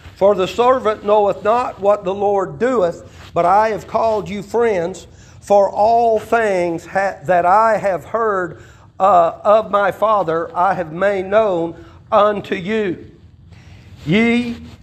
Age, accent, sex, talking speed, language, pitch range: 50-69, American, male, 135 wpm, English, 165-215 Hz